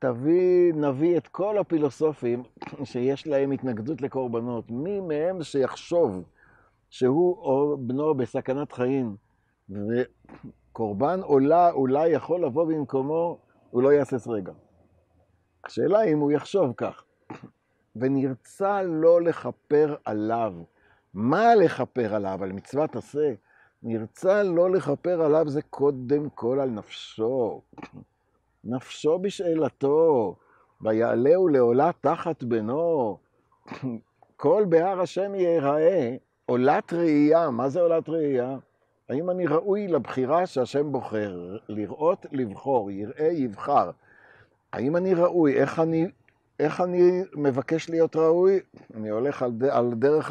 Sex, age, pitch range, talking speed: male, 50-69, 125-165 Hz, 110 wpm